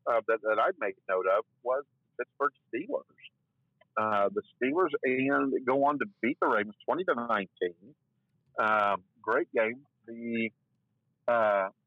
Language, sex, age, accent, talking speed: English, male, 50-69, American, 140 wpm